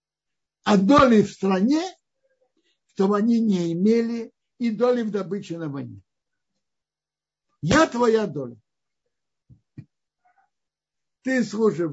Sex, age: male, 60-79